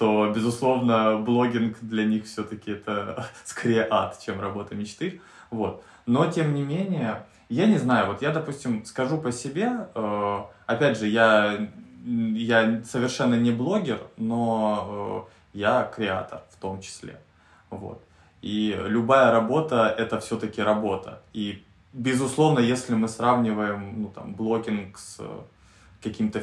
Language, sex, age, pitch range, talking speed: Russian, male, 20-39, 105-125 Hz, 120 wpm